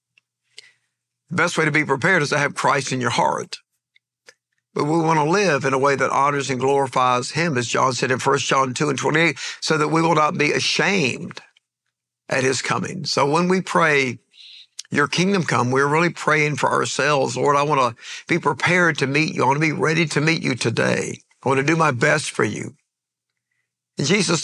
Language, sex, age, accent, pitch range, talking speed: English, male, 60-79, American, 135-175 Hz, 205 wpm